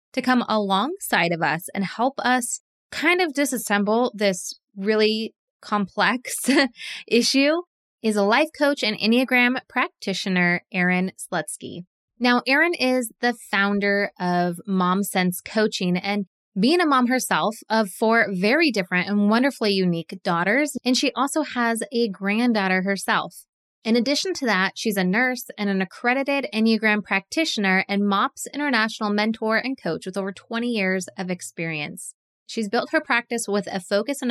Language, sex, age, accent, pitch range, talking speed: English, female, 20-39, American, 195-250 Hz, 150 wpm